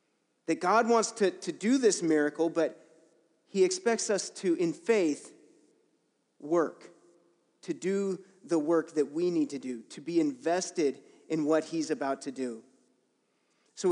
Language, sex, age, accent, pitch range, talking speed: English, male, 30-49, American, 155-225 Hz, 150 wpm